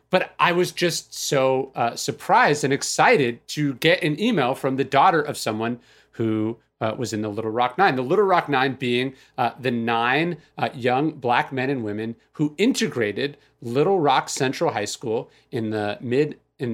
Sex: male